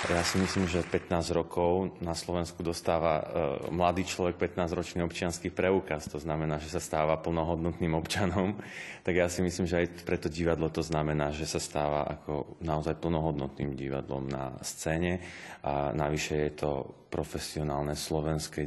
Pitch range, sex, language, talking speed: 75-85 Hz, male, Slovak, 155 wpm